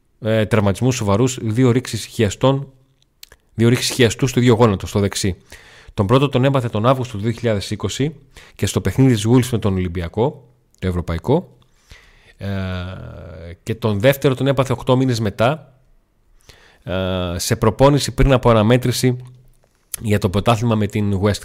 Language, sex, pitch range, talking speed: Greek, male, 100-125 Hz, 135 wpm